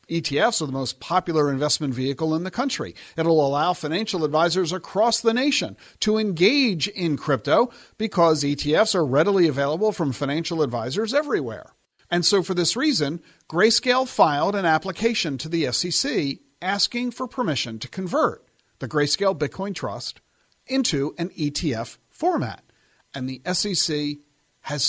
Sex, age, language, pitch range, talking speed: male, 50-69, English, 140-195 Hz, 140 wpm